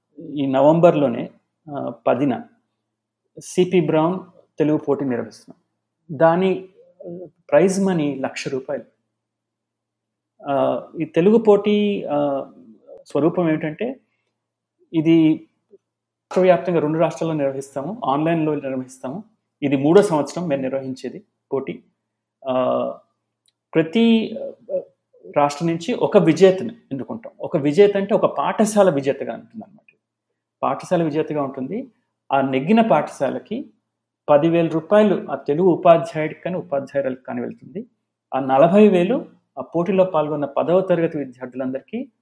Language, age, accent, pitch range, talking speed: Telugu, 30-49, native, 140-205 Hz, 100 wpm